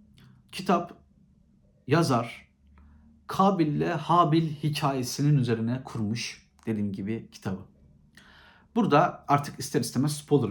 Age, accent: 50-69, native